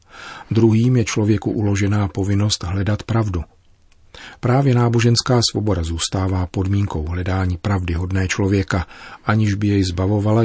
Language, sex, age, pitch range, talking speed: Czech, male, 40-59, 95-115 Hz, 115 wpm